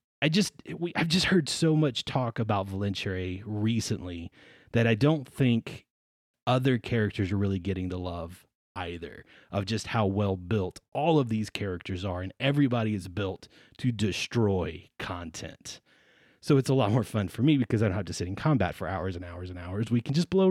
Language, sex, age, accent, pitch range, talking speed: English, male, 30-49, American, 95-135 Hz, 195 wpm